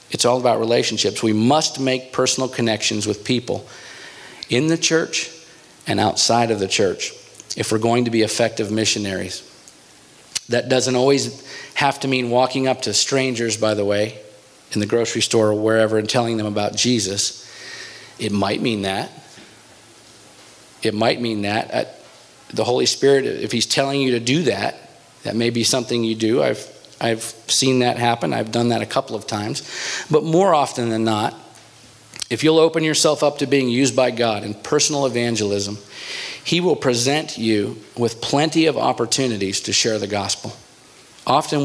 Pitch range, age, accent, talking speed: 110-130 Hz, 40-59, American, 170 wpm